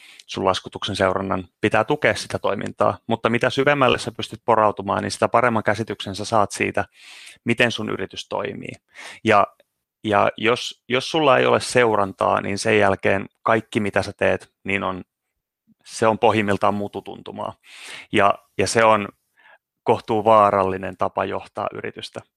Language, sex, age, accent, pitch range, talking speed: Finnish, male, 30-49, native, 105-115 Hz, 145 wpm